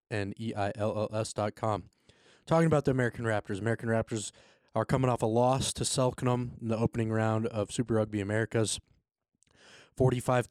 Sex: male